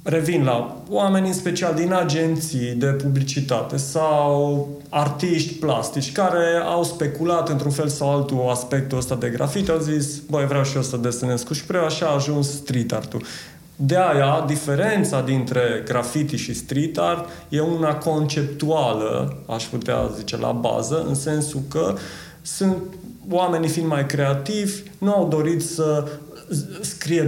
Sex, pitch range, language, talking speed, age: male, 135-165 Hz, Romanian, 145 wpm, 30-49